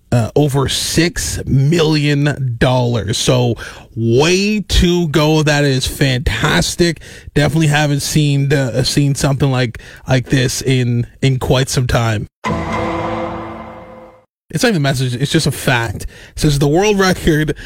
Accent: American